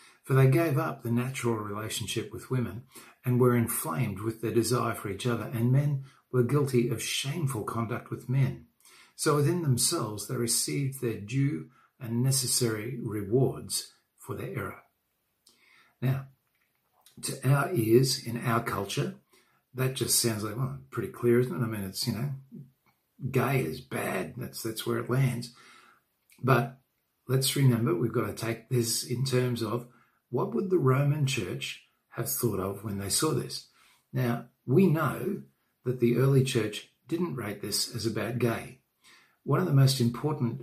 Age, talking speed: 50-69, 160 wpm